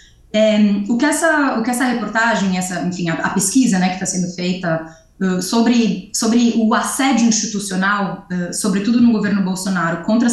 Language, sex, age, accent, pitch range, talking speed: Portuguese, female, 20-39, Brazilian, 200-275 Hz, 165 wpm